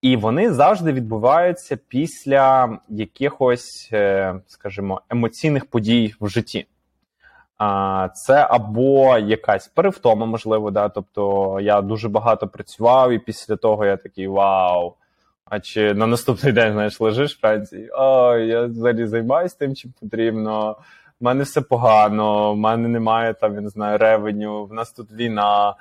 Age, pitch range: 20-39, 105-130 Hz